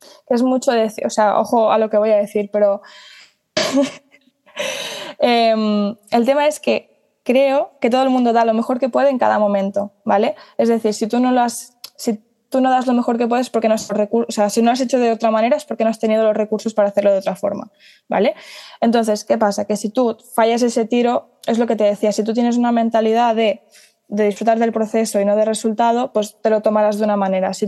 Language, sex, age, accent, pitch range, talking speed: Spanish, female, 20-39, Spanish, 210-245 Hz, 235 wpm